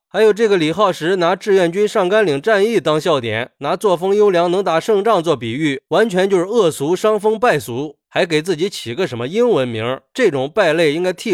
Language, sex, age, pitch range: Chinese, male, 20-39, 155-215 Hz